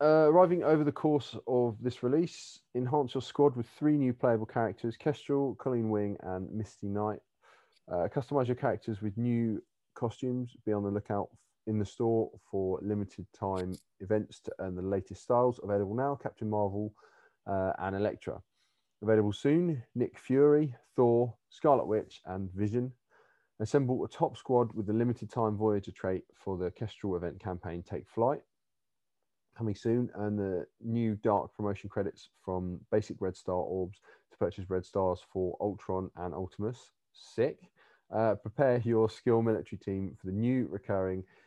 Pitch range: 95-120 Hz